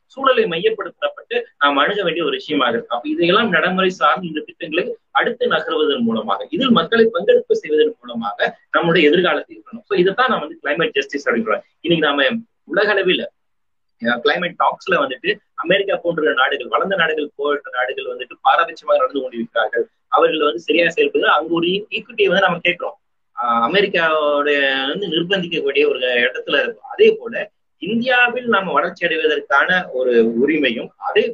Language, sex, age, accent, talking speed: Tamil, male, 30-49, native, 140 wpm